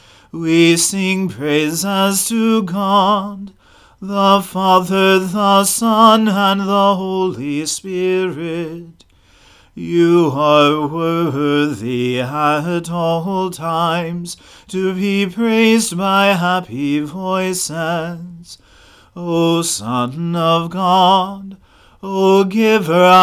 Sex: male